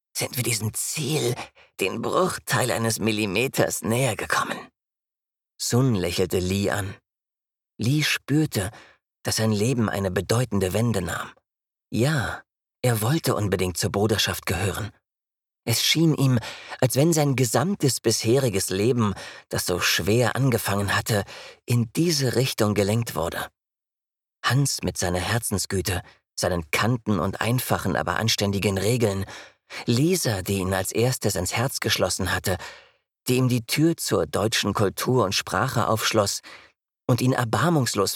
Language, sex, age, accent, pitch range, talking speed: German, male, 40-59, German, 100-130 Hz, 130 wpm